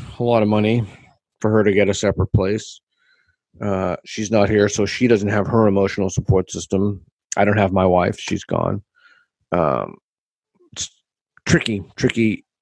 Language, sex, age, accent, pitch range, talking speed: English, male, 40-59, American, 100-125 Hz, 160 wpm